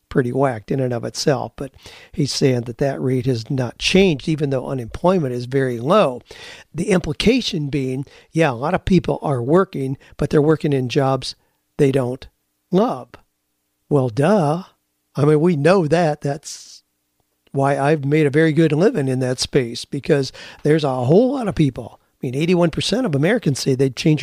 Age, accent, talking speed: 50-69, American, 180 wpm